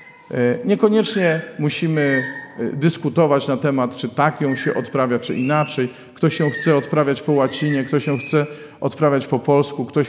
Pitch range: 120-150 Hz